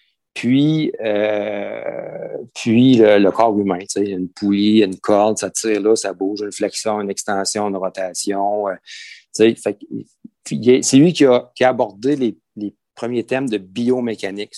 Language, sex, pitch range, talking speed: French, male, 105-130 Hz, 165 wpm